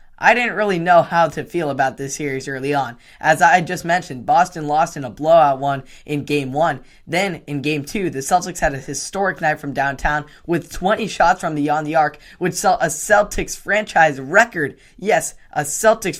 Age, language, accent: 10-29, English, American